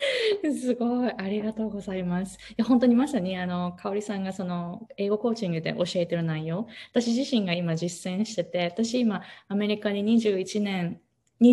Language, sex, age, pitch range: Japanese, female, 20-39, 175-265 Hz